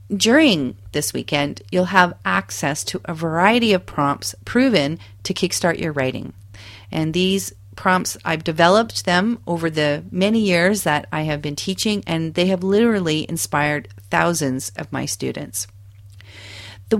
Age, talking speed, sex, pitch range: 40-59, 145 wpm, female, 140-185 Hz